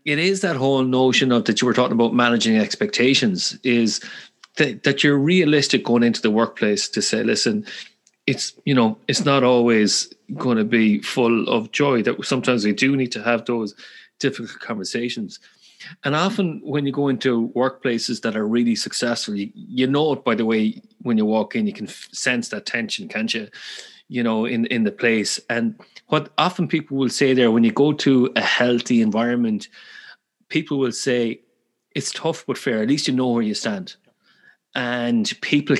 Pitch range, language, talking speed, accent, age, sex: 115-140 Hz, English, 185 wpm, Irish, 30-49, male